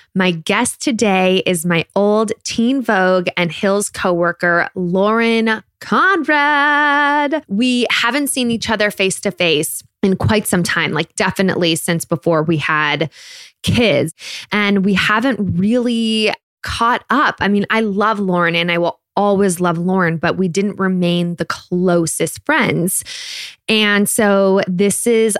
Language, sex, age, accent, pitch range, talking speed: English, female, 20-39, American, 170-220 Hz, 135 wpm